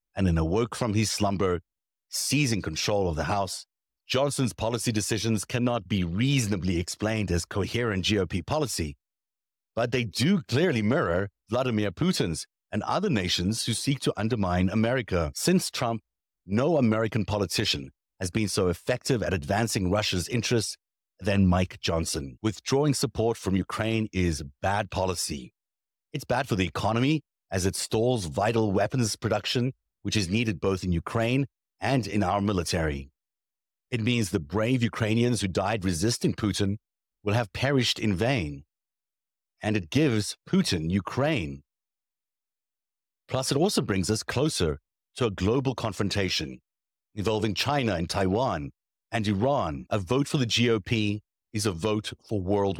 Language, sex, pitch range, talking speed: English, male, 95-115 Hz, 145 wpm